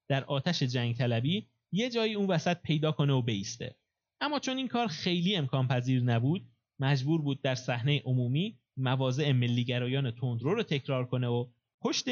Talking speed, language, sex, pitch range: 165 wpm, Persian, male, 130-175 Hz